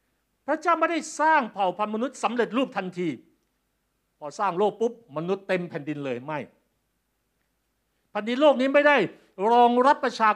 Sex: male